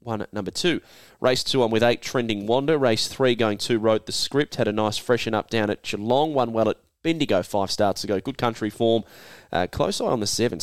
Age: 20-39